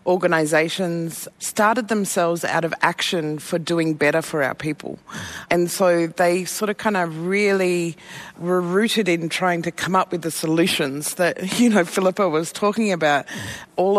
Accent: Australian